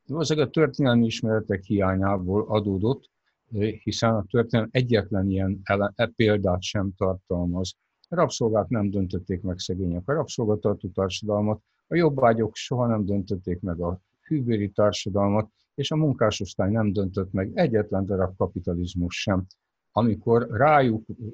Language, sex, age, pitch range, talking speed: Hungarian, male, 60-79, 95-115 Hz, 130 wpm